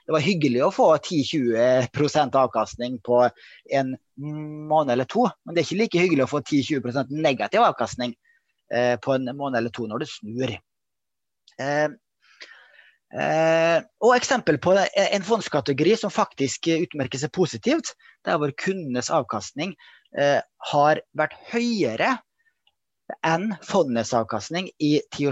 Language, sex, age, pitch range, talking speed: English, male, 30-49, 135-185 Hz, 135 wpm